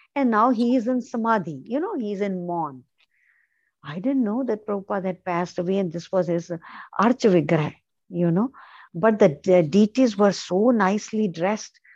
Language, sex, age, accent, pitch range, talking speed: English, female, 50-69, Indian, 180-245 Hz, 170 wpm